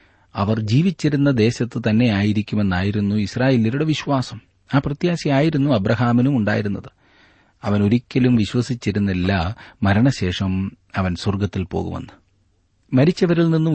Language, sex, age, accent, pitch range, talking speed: Malayalam, male, 30-49, native, 100-130 Hz, 85 wpm